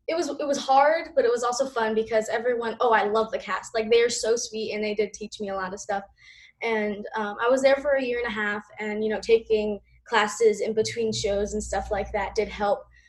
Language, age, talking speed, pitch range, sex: English, 10-29, 255 wpm, 205-235 Hz, female